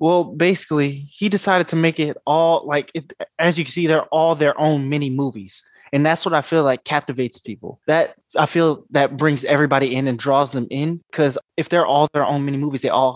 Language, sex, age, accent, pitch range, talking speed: English, male, 20-39, American, 135-155 Hz, 220 wpm